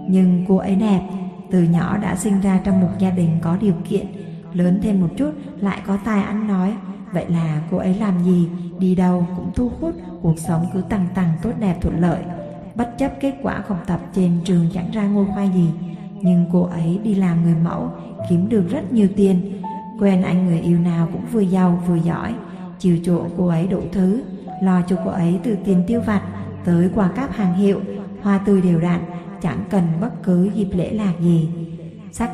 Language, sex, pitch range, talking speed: Vietnamese, female, 175-200 Hz, 210 wpm